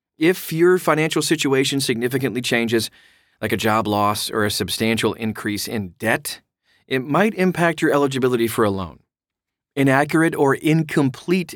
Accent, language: American, English